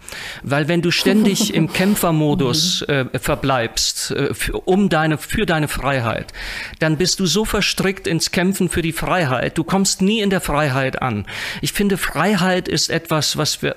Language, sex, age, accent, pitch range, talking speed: German, male, 40-59, German, 130-170 Hz, 165 wpm